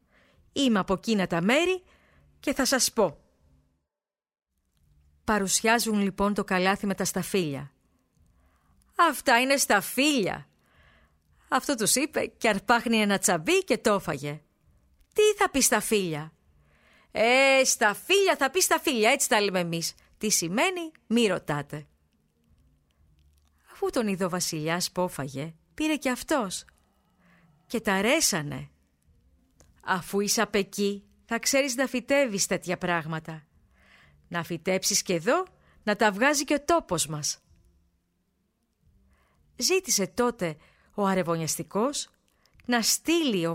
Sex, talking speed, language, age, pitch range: female, 115 wpm, Greek, 30-49, 150-250 Hz